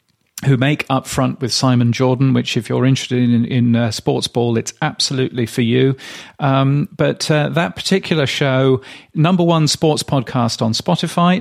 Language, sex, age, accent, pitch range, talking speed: English, male, 40-59, British, 115-145 Hz, 170 wpm